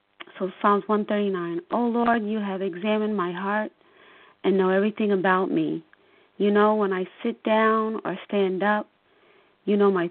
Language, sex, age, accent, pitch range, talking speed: English, female, 30-49, American, 190-225 Hz, 160 wpm